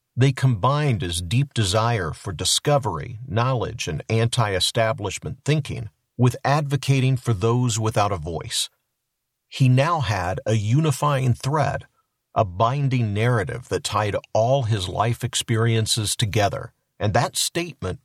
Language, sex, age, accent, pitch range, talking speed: English, male, 50-69, American, 110-135 Hz, 125 wpm